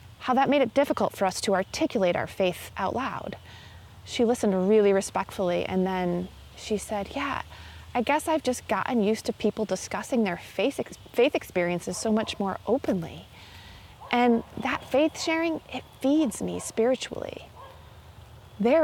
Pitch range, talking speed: 180-260 Hz, 155 wpm